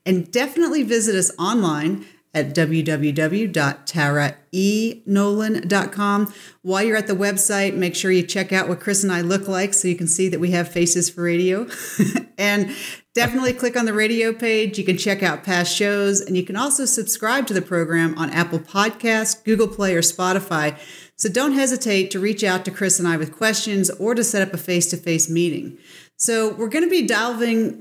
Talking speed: 185 wpm